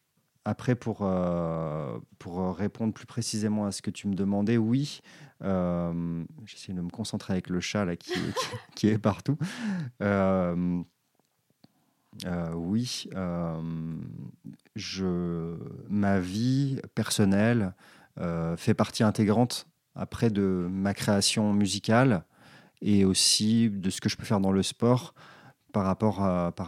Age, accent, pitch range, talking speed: 30-49, French, 90-110 Hz, 125 wpm